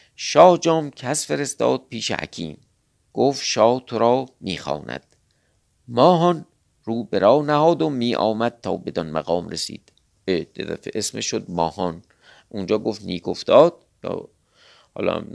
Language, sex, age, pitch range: Persian, male, 50-69, 95-140 Hz